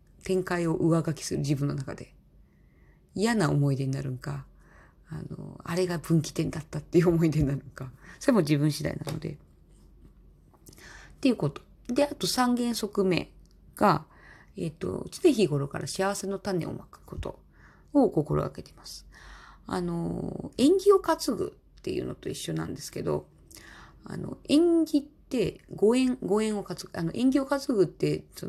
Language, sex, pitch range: Japanese, female, 145-215 Hz